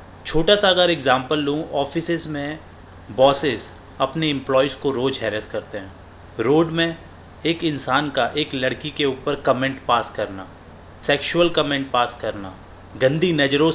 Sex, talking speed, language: male, 145 wpm, Hindi